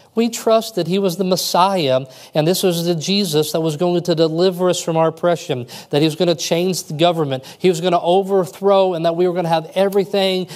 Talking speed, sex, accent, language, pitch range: 240 wpm, male, American, English, 130-180 Hz